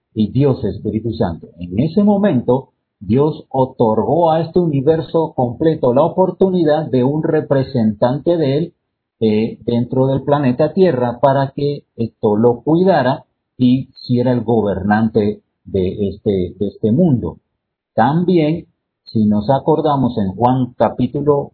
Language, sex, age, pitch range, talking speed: Spanish, male, 50-69, 105-150 Hz, 130 wpm